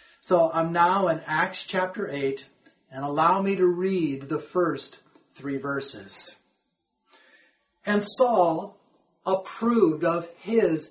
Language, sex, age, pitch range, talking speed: English, male, 40-59, 155-205 Hz, 115 wpm